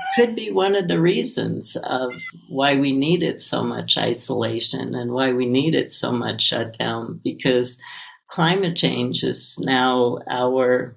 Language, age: English, 50-69